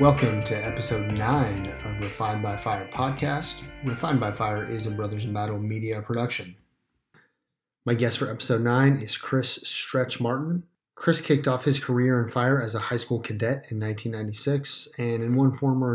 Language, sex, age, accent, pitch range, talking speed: English, male, 30-49, American, 110-135 Hz, 175 wpm